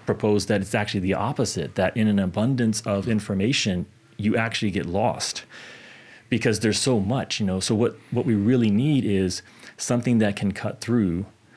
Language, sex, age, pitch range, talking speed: English, male, 30-49, 100-120 Hz, 175 wpm